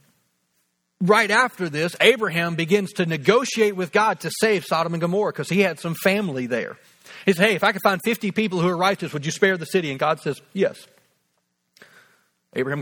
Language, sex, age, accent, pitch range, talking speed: English, male, 40-59, American, 140-200 Hz, 195 wpm